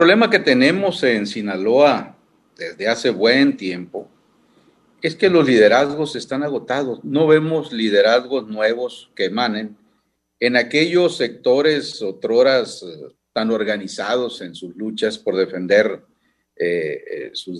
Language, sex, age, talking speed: Spanish, male, 50-69, 120 wpm